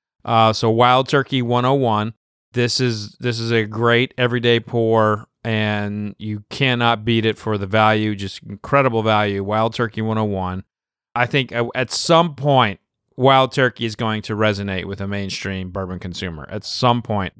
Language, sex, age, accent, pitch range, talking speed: English, male, 30-49, American, 105-125 Hz, 160 wpm